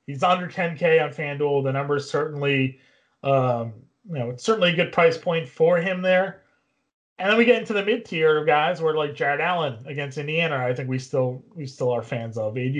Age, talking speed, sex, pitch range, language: 30-49, 210 wpm, male, 150-195 Hz, English